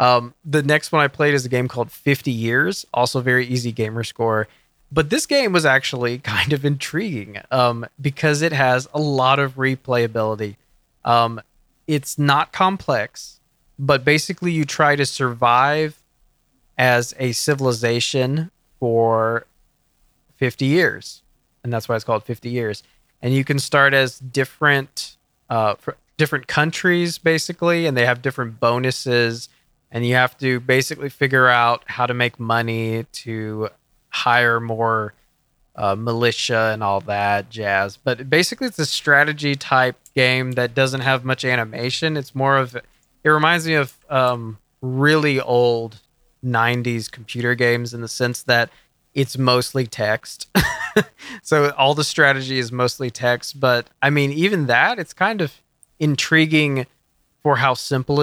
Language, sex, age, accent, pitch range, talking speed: English, male, 20-39, American, 120-145 Hz, 145 wpm